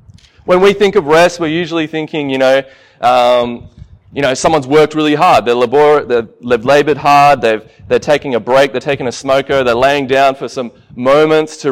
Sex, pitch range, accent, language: male, 120-150 Hz, Australian, English